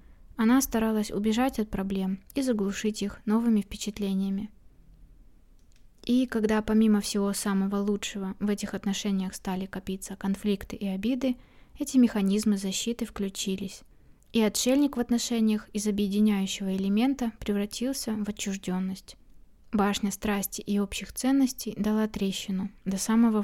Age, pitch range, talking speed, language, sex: 20-39, 195-225 Hz, 120 wpm, Russian, female